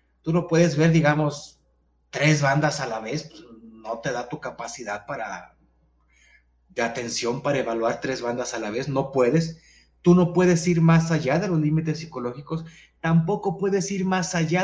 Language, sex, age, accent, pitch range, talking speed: Spanish, male, 30-49, Mexican, 140-185 Hz, 170 wpm